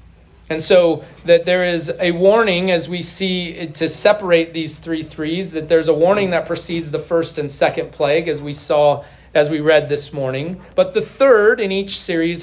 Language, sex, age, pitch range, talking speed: English, male, 40-59, 170-240 Hz, 195 wpm